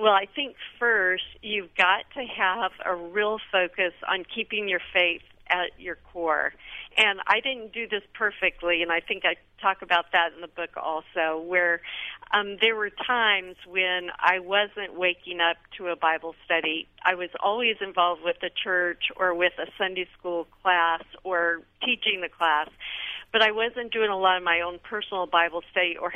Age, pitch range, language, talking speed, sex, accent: 50-69, 175-205 Hz, English, 180 wpm, female, American